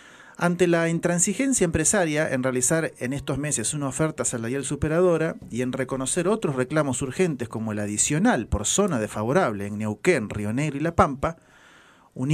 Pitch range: 135-180 Hz